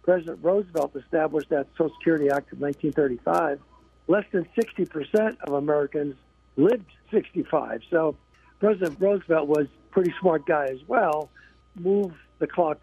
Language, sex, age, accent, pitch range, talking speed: English, male, 60-79, American, 145-185 Hz, 135 wpm